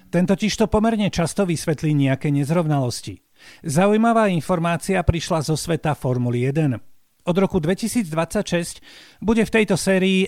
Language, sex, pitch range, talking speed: Slovak, male, 145-195 Hz, 115 wpm